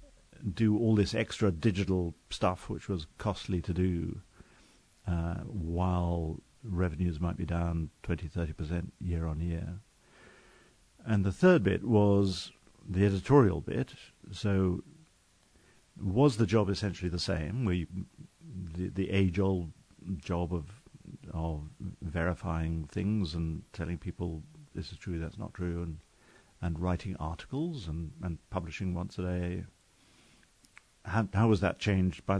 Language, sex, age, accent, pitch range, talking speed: English, male, 50-69, British, 85-100 Hz, 135 wpm